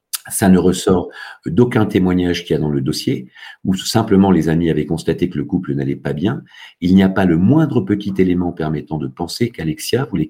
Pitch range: 75-95 Hz